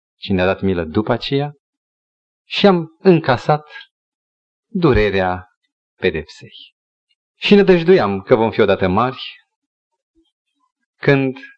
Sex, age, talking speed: male, 30-49, 105 wpm